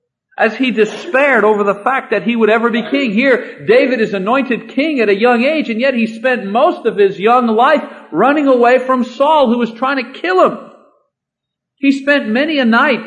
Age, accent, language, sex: 50-69, American, English, male